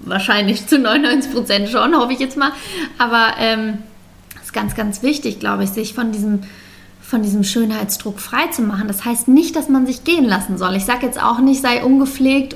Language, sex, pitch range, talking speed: German, female, 210-250 Hz, 200 wpm